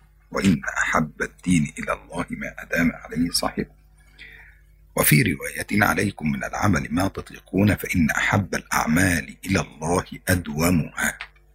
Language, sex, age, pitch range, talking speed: Indonesian, male, 50-69, 75-100 Hz, 115 wpm